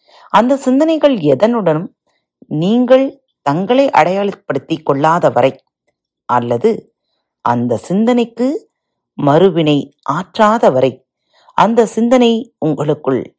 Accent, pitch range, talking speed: native, 140-225 Hz, 75 wpm